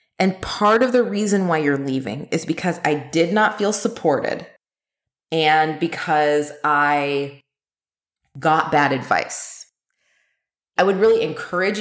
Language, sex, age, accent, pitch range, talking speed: English, female, 20-39, American, 160-220 Hz, 125 wpm